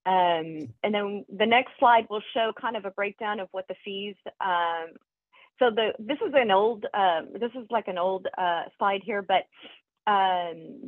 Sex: female